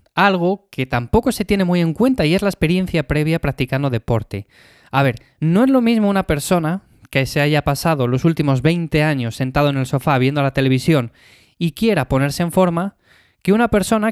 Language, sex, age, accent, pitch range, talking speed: Spanish, male, 20-39, Spanish, 135-170 Hz, 195 wpm